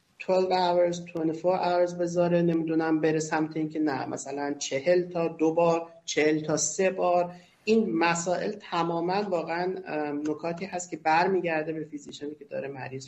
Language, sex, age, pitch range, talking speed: Persian, male, 50-69, 160-195 Hz, 145 wpm